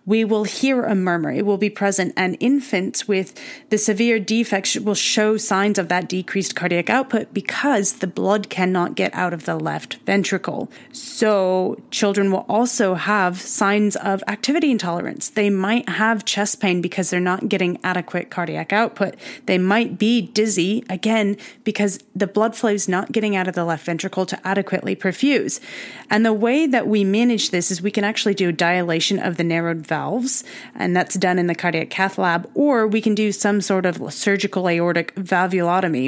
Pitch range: 180-220 Hz